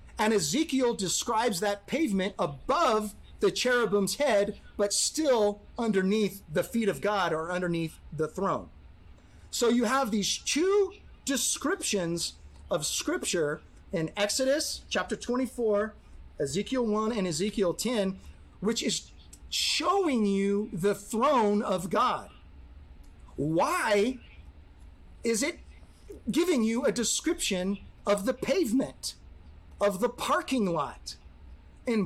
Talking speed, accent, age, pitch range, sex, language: 110 wpm, American, 30-49, 170-235 Hz, male, English